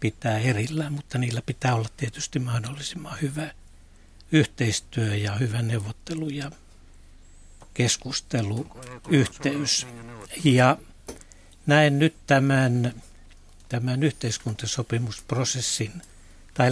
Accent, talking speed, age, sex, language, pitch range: native, 80 wpm, 60-79, male, Finnish, 105-140 Hz